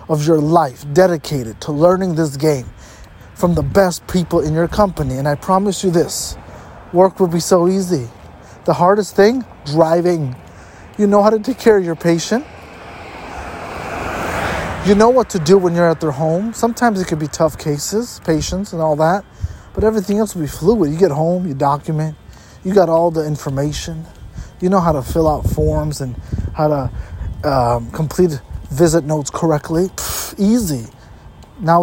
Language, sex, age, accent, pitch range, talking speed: English, male, 20-39, American, 145-185 Hz, 170 wpm